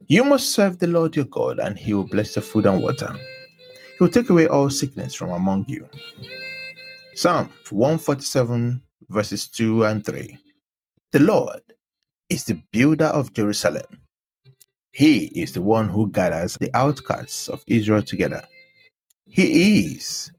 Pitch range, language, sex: 105-165 Hz, English, male